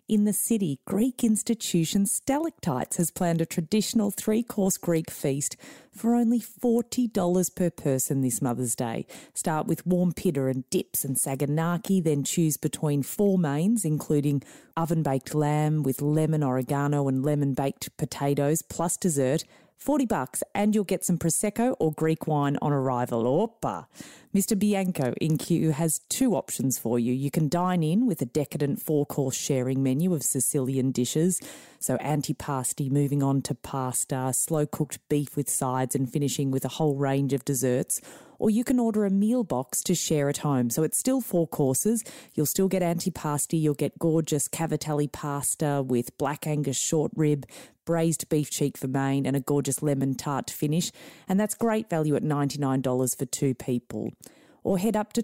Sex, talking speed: female, 165 wpm